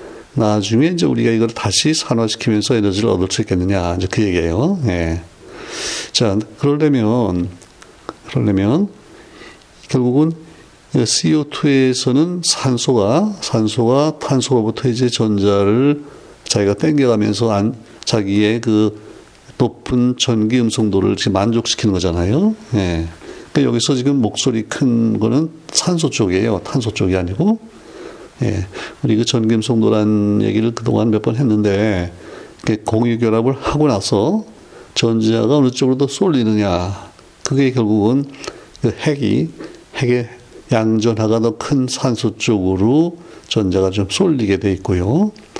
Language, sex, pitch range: Korean, male, 100-130 Hz